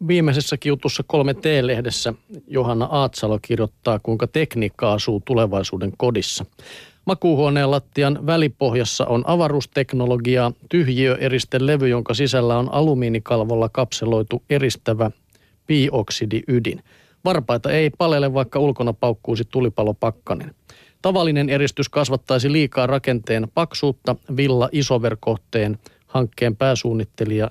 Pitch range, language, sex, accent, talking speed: 115-140 Hz, Finnish, male, native, 90 wpm